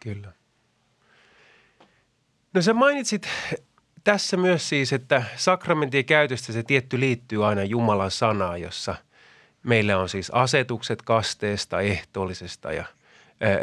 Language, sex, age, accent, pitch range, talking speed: Finnish, male, 30-49, native, 110-170 Hz, 115 wpm